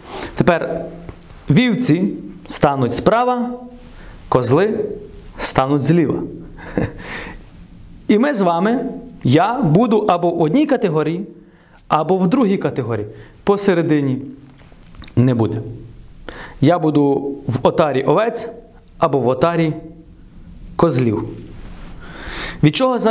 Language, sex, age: Ukrainian, male, 30-49